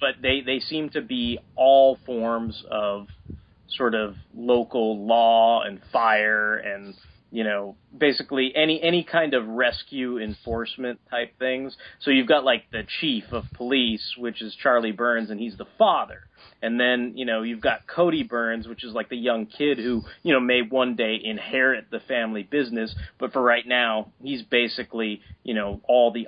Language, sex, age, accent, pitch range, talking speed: English, male, 30-49, American, 105-125 Hz, 175 wpm